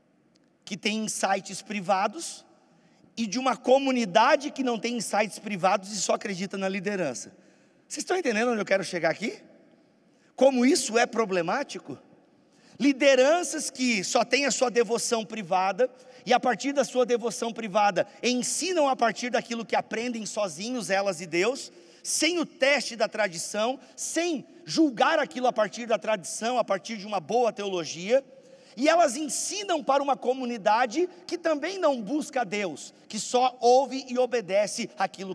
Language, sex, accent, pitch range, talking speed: Portuguese, male, Brazilian, 180-250 Hz, 155 wpm